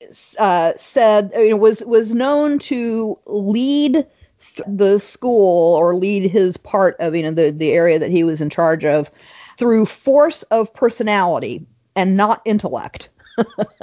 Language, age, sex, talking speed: English, 50-69, female, 155 wpm